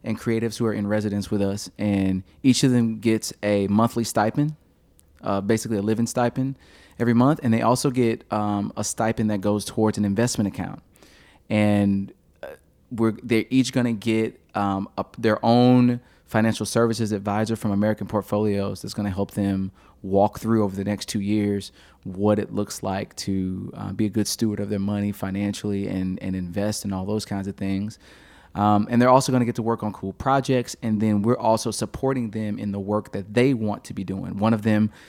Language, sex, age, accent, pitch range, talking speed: English, male, 20-39, American, 100-115 Hz, 200 wpm